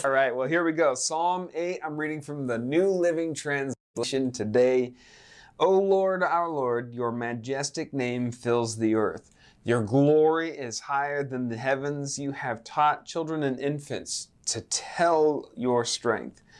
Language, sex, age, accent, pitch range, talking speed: English, male, 30-49, American, 115-145 Hz, 155 wpm